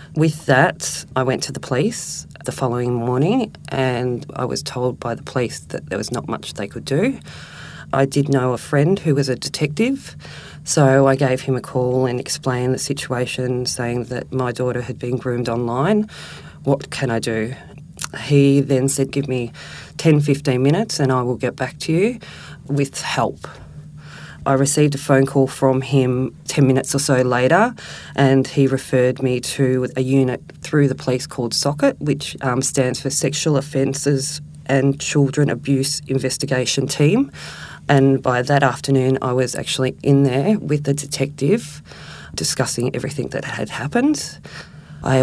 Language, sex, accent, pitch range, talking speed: English, female, Australian, 130-145 Hz, 165 wpm